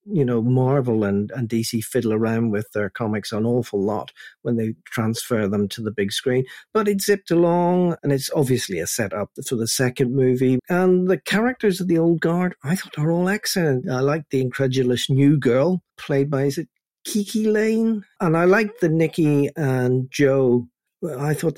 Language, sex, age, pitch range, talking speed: English, male, 50-69, 120-165 Hz, 190 wpm